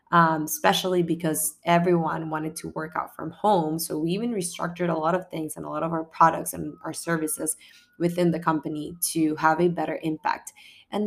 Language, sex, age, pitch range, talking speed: English, female, 20-39, 160-180 Hz, 195 wpm